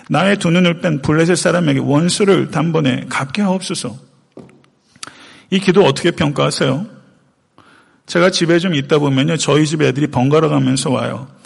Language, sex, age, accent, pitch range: Korean, male, 40-59, native, 145-195 Hz